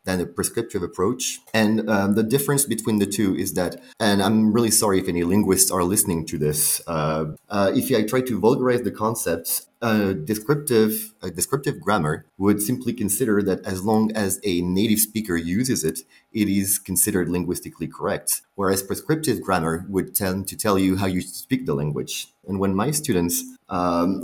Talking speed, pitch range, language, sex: 180 wpm, 90-110 Hz, English, male